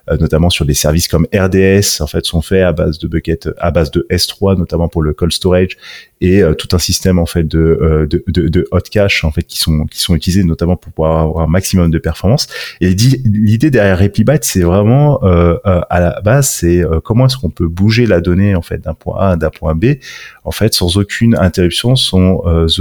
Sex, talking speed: male, 225 wpm